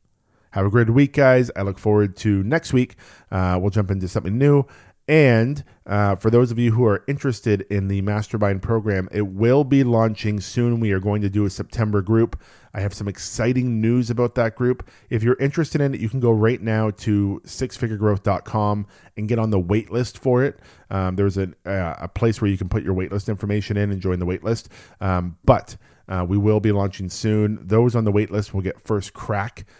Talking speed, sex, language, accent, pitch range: 210 wpm, male, English, American, 95-115 Hz